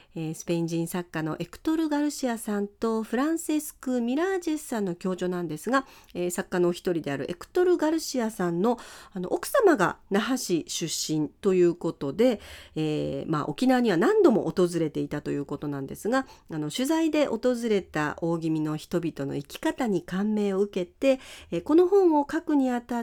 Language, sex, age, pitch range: Japanese, female, 40-59, 170-275 Hz